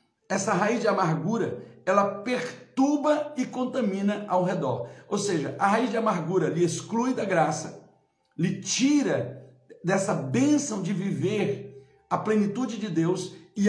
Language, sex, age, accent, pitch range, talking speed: Portuguese, male, 60-79, Brazilian, 175-220 Hz, 135 wpm